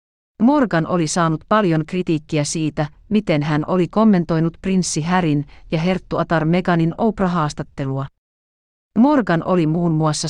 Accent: native